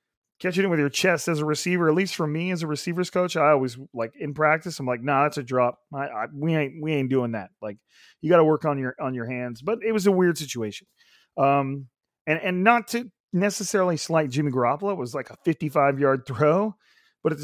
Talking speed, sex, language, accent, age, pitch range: 235 wpm, male, English, American, 30-49, 130-165 Hz